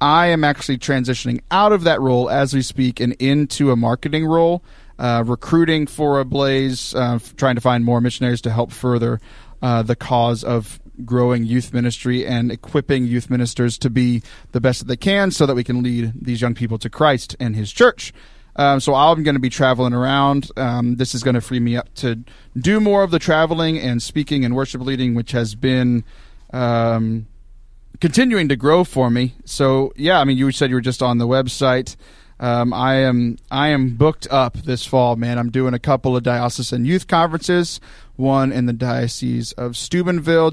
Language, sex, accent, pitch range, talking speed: English, male, American, 120-145 Hz, 195 wpm